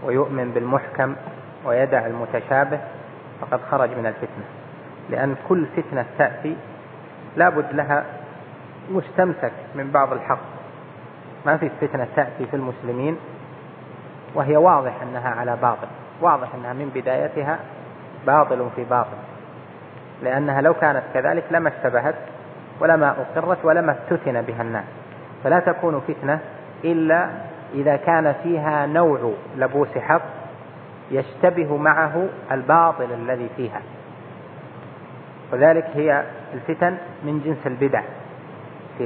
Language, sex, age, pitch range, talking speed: Arabic, male, 30-49, 125-155 Hz, 110 wpm